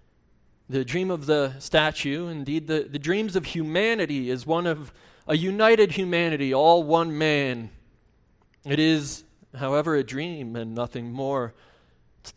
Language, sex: English, male